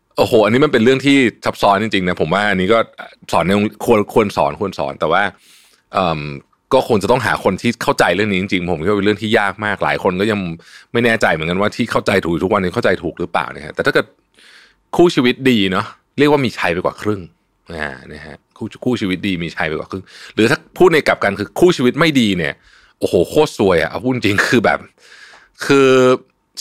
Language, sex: Thai, male